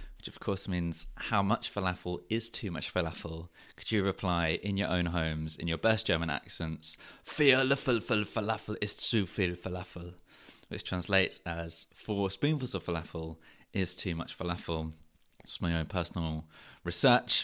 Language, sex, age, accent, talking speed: English, male, 20-39, British, 150 wpm